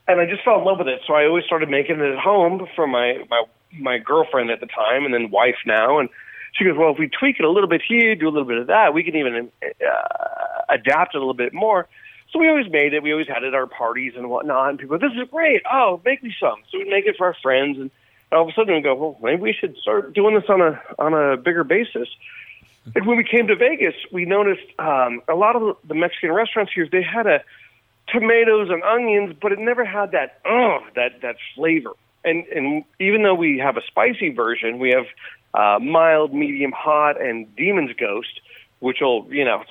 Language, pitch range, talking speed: English, 140-225 Hz, 245 wpm